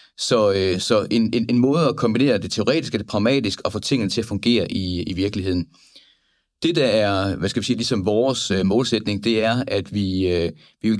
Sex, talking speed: male, 230 wpm